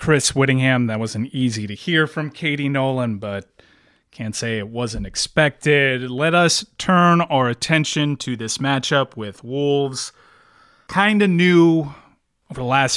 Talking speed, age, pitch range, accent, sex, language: 150 wpm, 30-49, 125-165 Hz, American, male, English